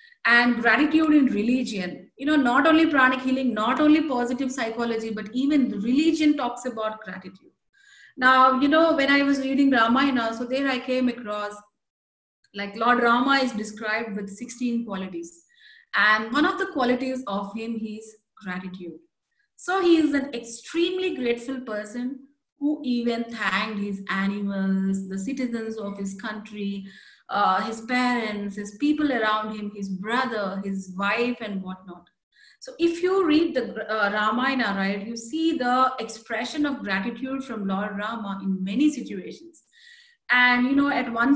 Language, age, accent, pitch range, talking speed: English, 30-49, Indian, 215-285 Hz, 150 wpm